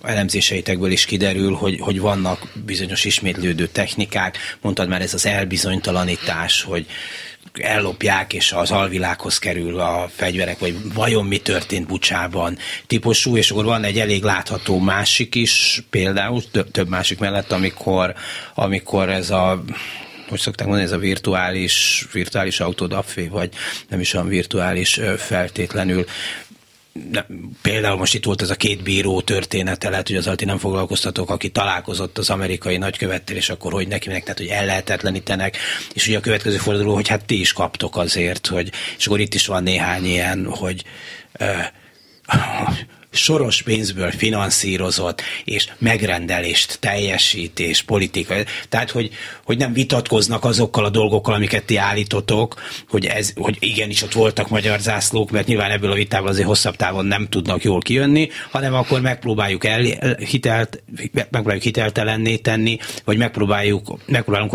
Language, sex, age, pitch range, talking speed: Hungarian, male, 30-49, 95-110 Hz, 140 wpm